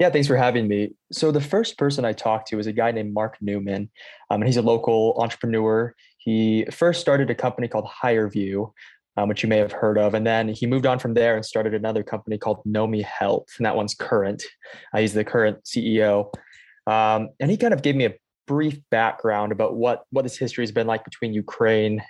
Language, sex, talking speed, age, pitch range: English, male, 225 wpm, 20-39, 110-125 Hz